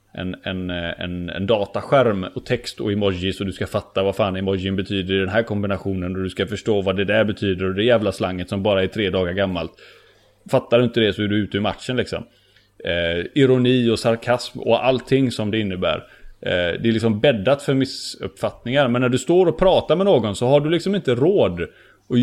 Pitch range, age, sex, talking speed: 100-140 Hz, 30-49, male, 220 wpm